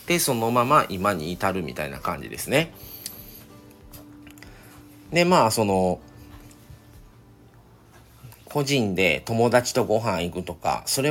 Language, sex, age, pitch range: Japanese, male, 40-59, 95-125 Hz